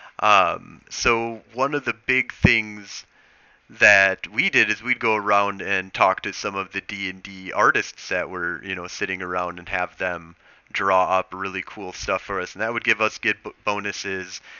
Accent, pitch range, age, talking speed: American, 95-115 Hz, 30-49, 195 wpm